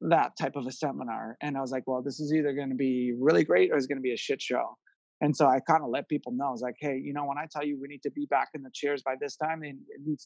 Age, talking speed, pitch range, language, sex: 30-49, 335 wpm, 130-150 Hz, English, male